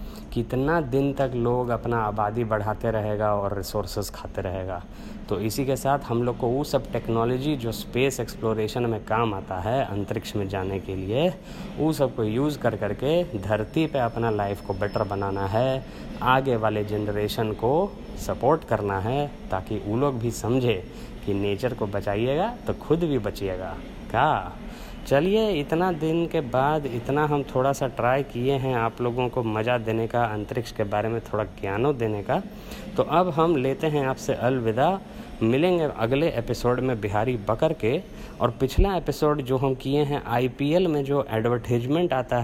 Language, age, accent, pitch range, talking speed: Hindi, 20-39, native, 105-145 Hz, 170 wpm